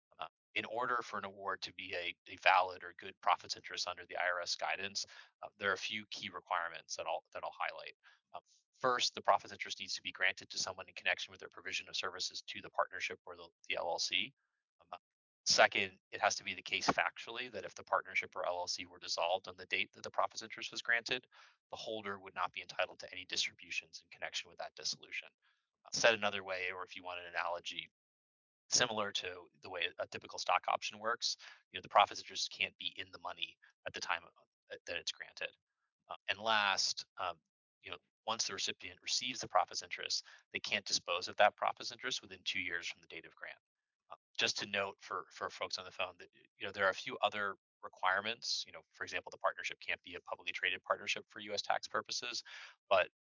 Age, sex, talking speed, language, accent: 30-49, male, 220 wpm, English, American